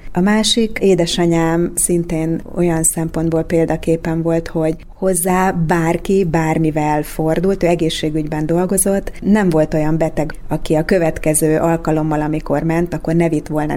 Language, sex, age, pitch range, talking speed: Hungarian, female, 30-49, 155-175 Hz, 125 wpm